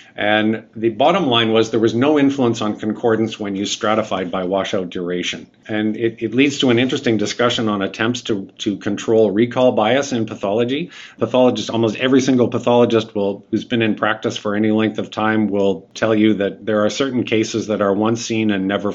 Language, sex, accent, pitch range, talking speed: English, male, American, 100-115 Hz, 200 wpm